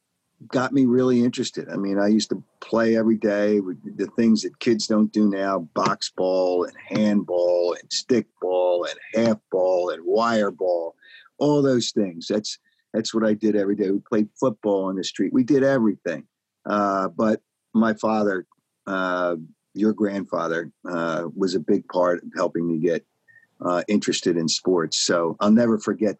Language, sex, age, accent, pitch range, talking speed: English, male, 50-69, American, 95-115 Hz, 170 wpm